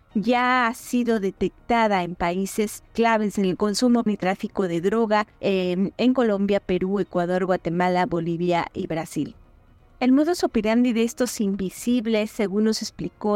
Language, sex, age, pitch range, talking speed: Spanish, female, 30-49, 190-230 Hz, 145 wpm